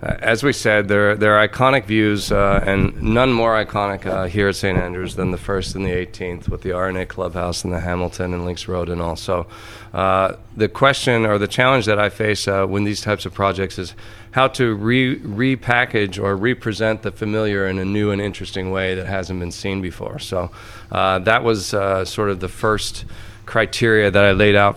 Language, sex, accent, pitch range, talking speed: English, male, American, 95-110 Hz, 210 wpm